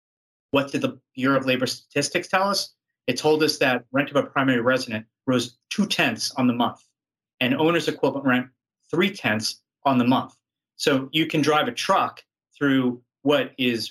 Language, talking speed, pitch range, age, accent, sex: English, 175 wpm, 120-145 Hz, 30-49, American, male